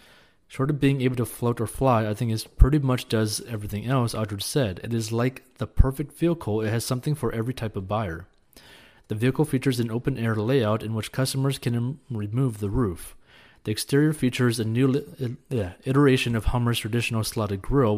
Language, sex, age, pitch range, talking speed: English, male, 30-49, 105-130 Hz, 200 wpm